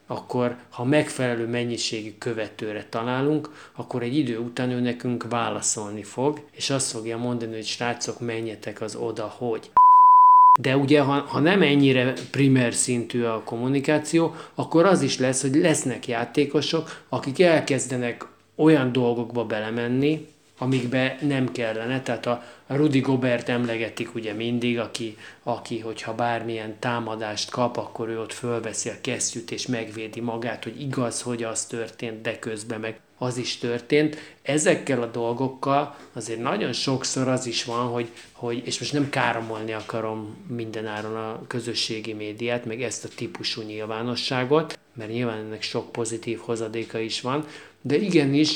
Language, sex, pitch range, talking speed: Hungarian, male, 115-135 Hz, 145 wpm